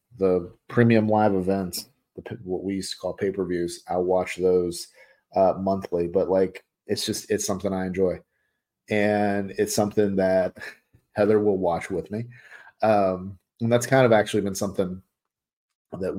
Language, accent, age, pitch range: English, American, 30-49, 95-110 Hz